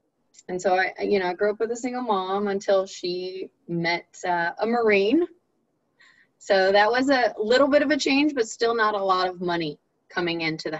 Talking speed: 205 wpm